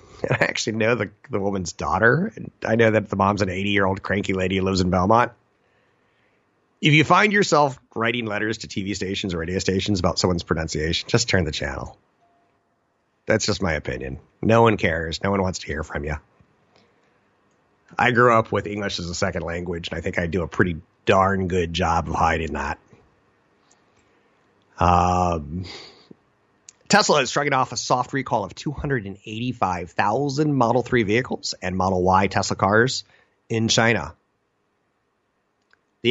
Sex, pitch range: male, 90-115 Hz